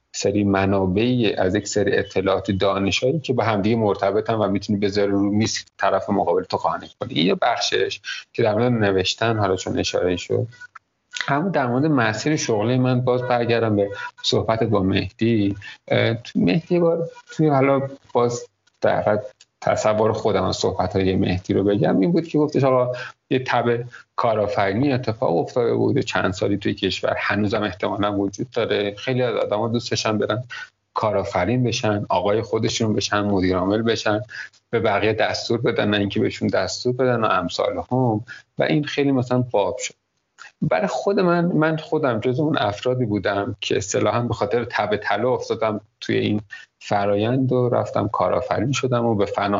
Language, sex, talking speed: Persian, male, 160 wpm